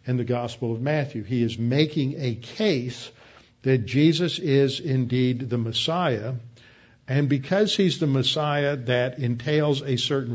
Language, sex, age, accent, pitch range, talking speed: English, male, 50-69, American, 120-145 Hz, 145 wpm